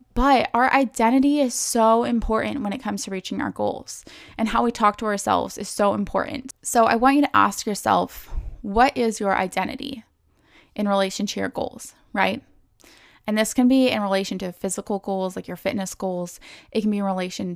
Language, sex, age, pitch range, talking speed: English, female, 20-39, 195-230 Hz, 195 wpm